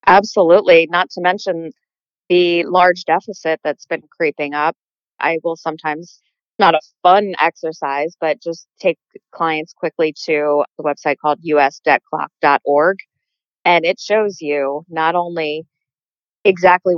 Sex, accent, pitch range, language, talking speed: female, American, 150-180 Hz, English, 125 wpm